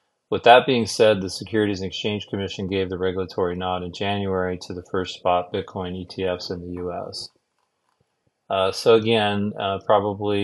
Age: 30-49